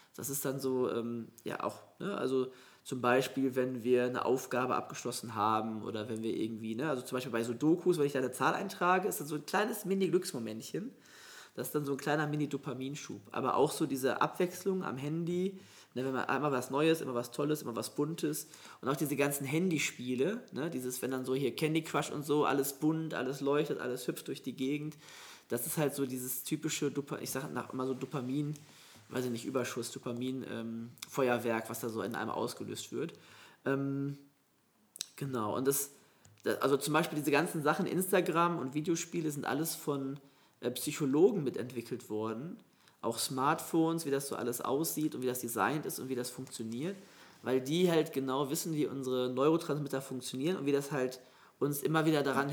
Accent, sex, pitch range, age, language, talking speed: German, male, 125-150 Hz, 20-39, German, 195 wpm